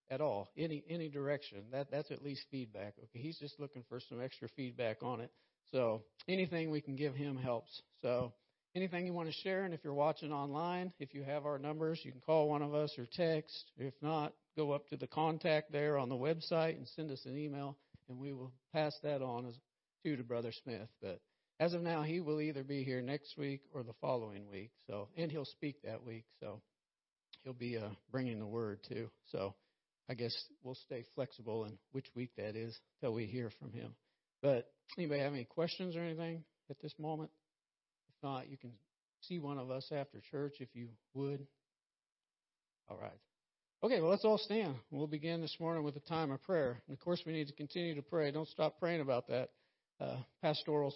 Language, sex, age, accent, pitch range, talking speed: English, male, 50-69, American, 125-155 Hz, 210 wpm